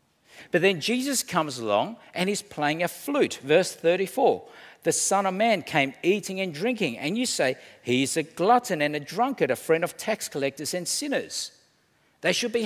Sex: male